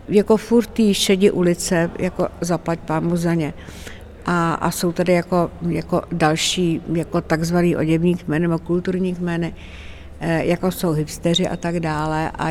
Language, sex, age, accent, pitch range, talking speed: Czech, female, 60-79, native, 160-185 Hz, 150 wpm